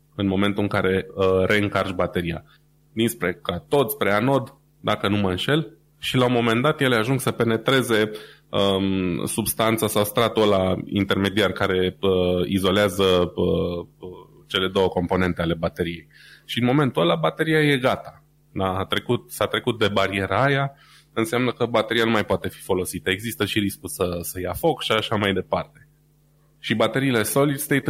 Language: Romanian